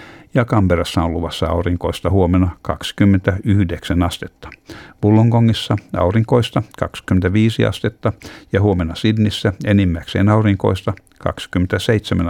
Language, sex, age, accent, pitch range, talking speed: Finnish, male, 60-79, native, 90-110 Hz, 90 wpm